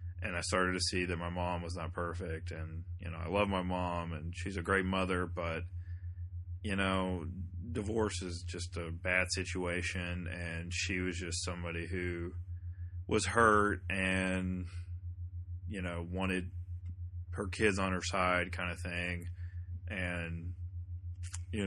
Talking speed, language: 150 wpm, English